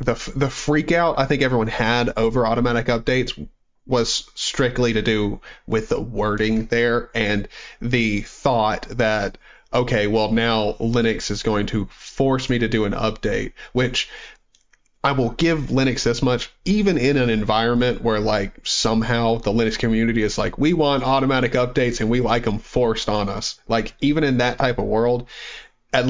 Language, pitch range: English, 110-130 Hz